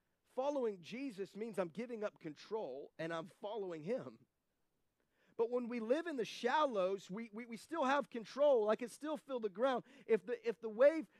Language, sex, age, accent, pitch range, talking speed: English, male, 30-49, American, 195-255 Hz, 190 wpm